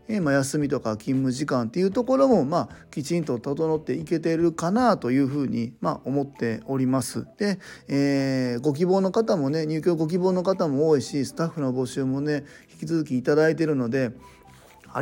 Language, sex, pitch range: Japanese, male, 130-165 Hz